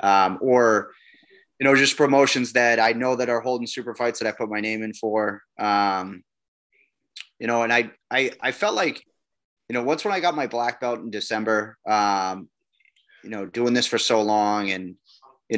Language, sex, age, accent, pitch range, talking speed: English, male, 30-49, American, 105-120 Hz, 195 wpm